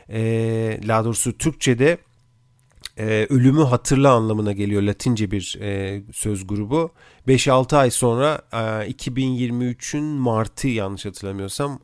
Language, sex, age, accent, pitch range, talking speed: Turkish, male, 40-59, native, 110-130 Hz, 105 wpm